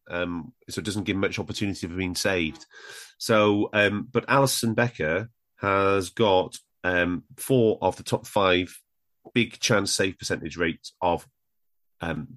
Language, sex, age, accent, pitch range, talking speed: English, male, 30-49, British, 95-120 Hz, 145 wpm